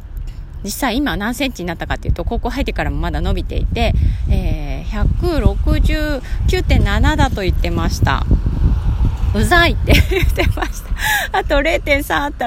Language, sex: Japanese, female